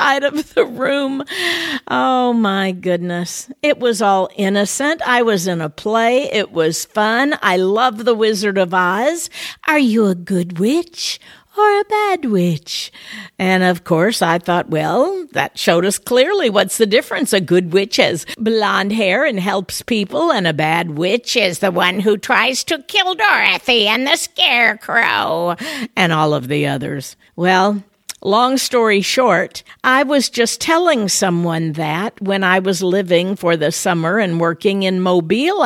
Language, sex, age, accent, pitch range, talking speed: English, female, 50-69, American, 180-260 Hz, 160 wpm